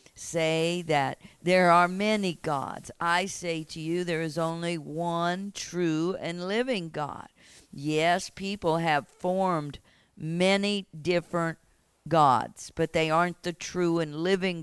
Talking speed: 130 wpm